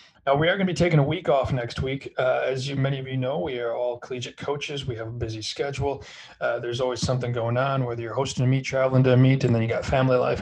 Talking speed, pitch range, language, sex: 290 wpm, 125-150 Hz, English, male